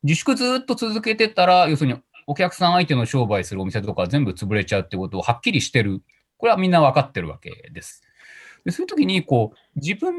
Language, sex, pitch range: Japanese, male, 125-200 Hz